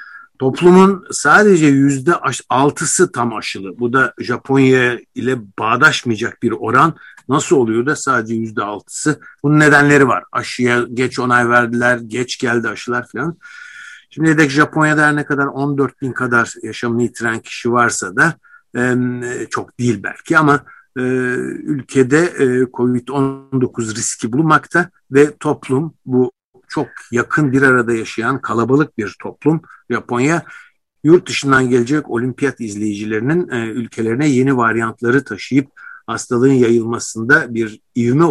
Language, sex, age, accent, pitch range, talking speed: Turkish, male, 60-79, native, 120-150 Hz, 115 wpm